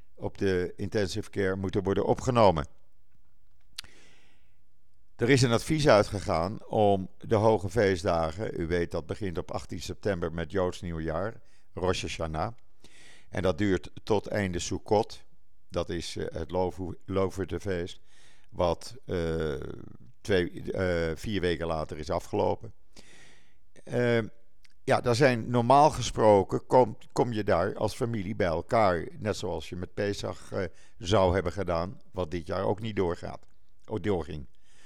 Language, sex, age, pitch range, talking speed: Dutch, male, 50-69, 90-110 Hz, 135 wpm